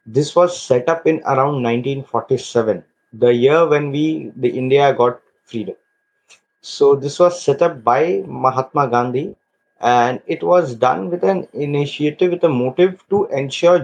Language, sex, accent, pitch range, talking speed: English, male, Indian, 125-170 Hz, 150 wpm